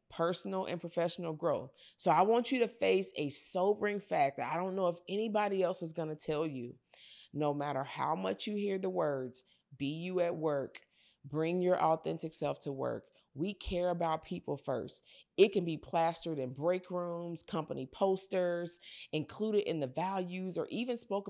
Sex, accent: female, American